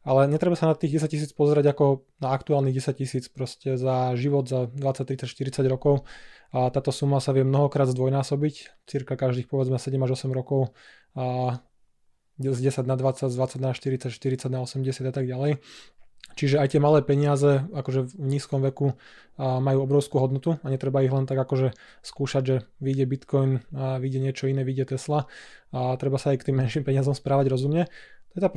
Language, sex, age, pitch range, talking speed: Slovak, male, 20-39, 130-145 Hz, 190 wpm